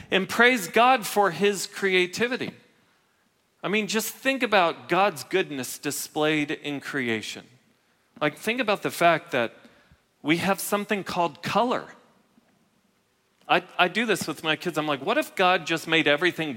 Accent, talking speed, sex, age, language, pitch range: American, 150 wpm, male, 40-59, English, 150-220 Hz